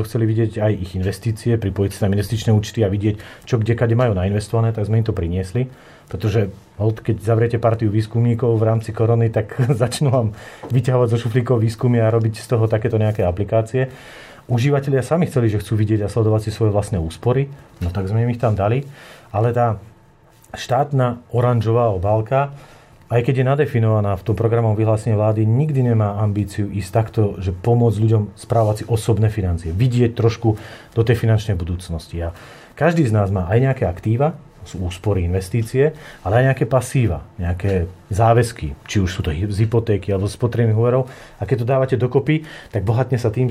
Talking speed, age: 180 wpm, 40-59